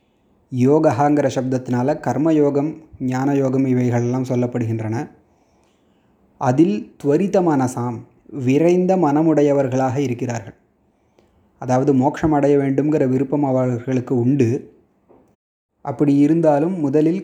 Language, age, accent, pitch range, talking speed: Tamil, 30-49, native, 130-155 Hz, 70 wpm